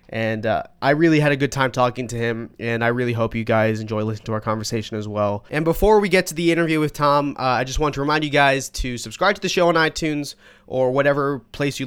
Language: English